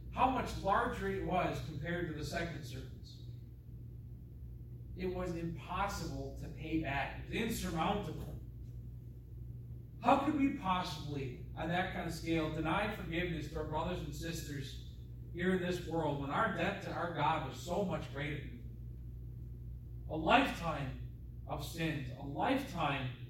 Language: English